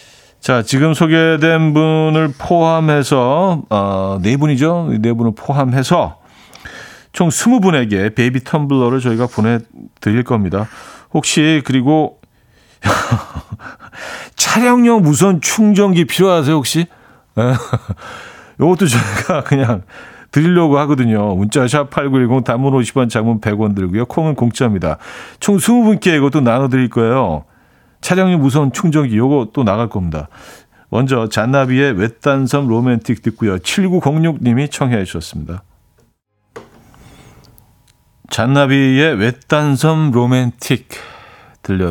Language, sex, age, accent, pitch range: Korean, male, 40-59, native, 115-155 Hz